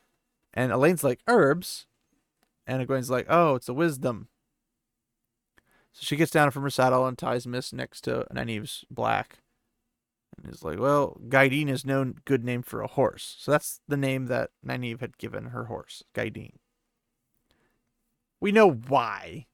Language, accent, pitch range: English, American, 130-195 Hz